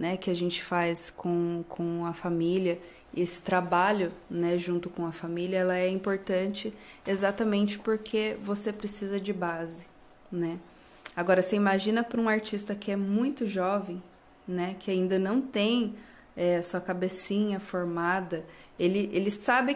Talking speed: 145 wpm